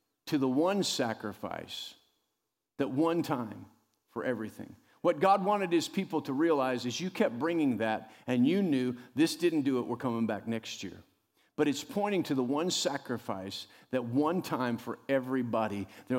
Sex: male